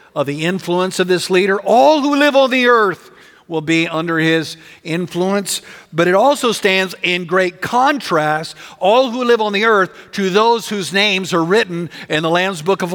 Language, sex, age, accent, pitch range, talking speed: English, male, 50-69, American, 160-225 Hz, 190 wpm